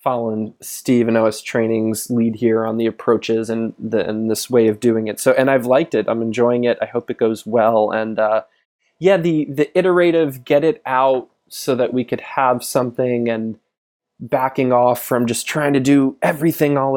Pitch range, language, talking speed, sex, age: 115-140 Hz, English, 200 wpm, male, 20-39